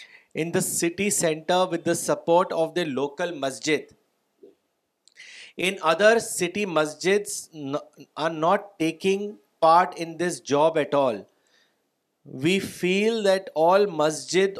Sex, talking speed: male, 120 wpm